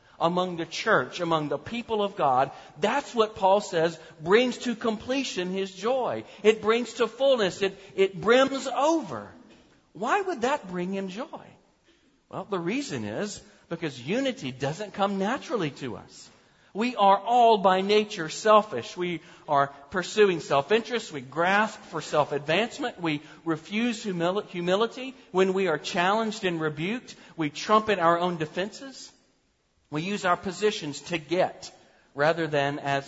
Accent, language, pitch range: American, English, 170-230 Hz